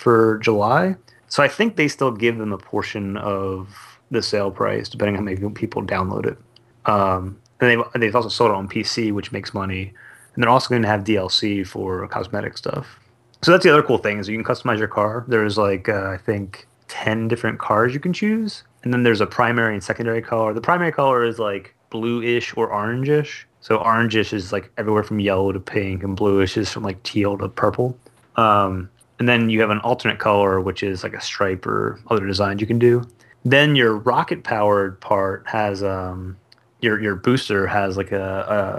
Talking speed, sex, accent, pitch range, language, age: 210 wpm, male, American, 100-120 Hz, English, 30-49